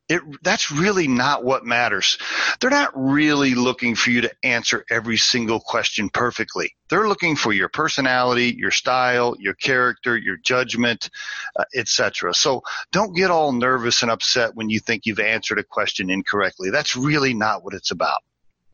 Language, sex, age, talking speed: English, male, 40-59, 165 wpm